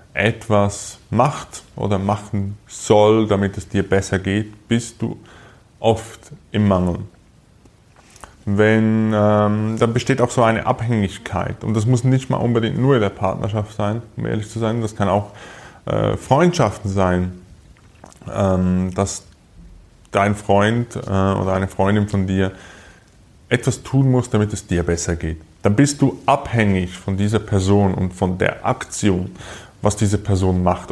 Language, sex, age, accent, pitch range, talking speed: German, male, 20-39, Austrian, 95-115 Hz, 150 wpm